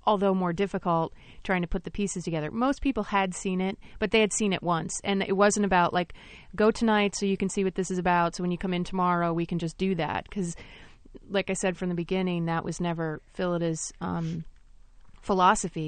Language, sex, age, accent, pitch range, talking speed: English, female, 30-49, American, 170-200 Hz, 225 wpm